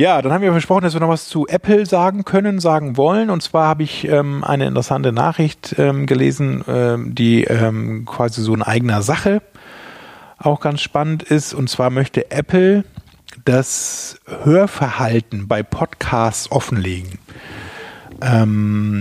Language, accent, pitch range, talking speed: German, German, 110-145 Hz, 150 wpm